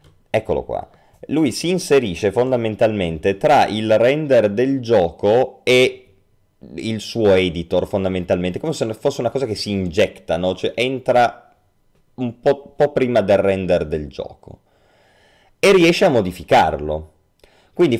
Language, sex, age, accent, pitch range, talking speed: Italian, male, 30-49, native, 90-140 Hz, 130 wpm